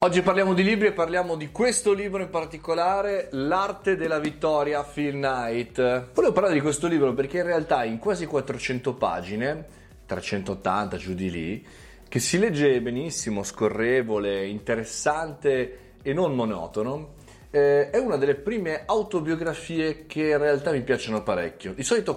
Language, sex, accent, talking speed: Italian, male, native, 145 wpm